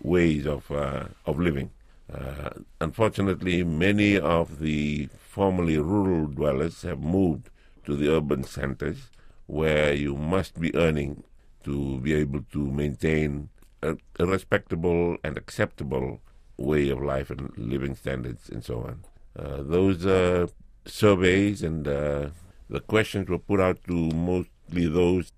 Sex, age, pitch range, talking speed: male, 50-69, 75-95 Hz, 130 wpm